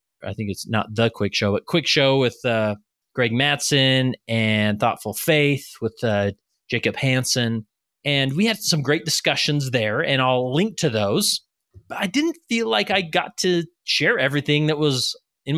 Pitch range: 120-185 Hz